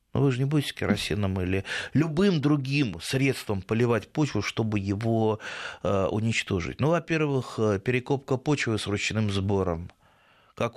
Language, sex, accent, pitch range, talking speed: Russian, male, native, 100-145 Hz, 130 wpm